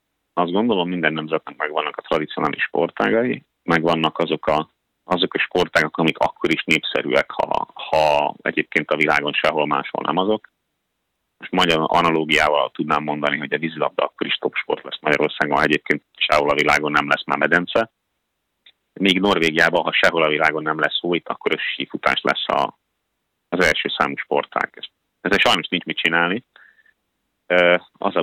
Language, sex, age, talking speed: Hungarian, male, 30-49, 160 wpm